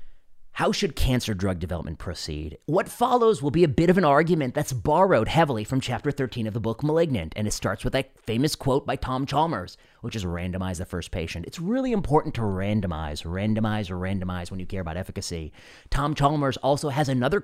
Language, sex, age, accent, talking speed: English, male, 30-49, American, 200 wpm